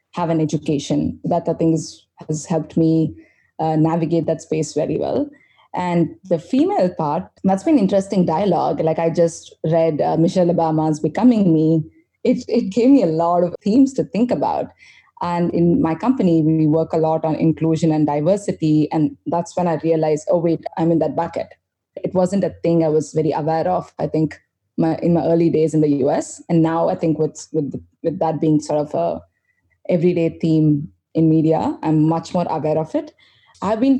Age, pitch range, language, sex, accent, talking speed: 20-39, 155-180 Hz, English, female, Indian, 195 wpm